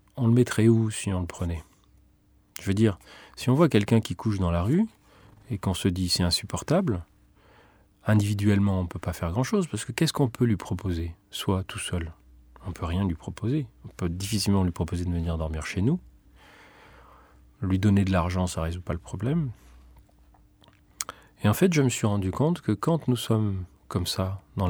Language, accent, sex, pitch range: French, French, male, 90-110 Hz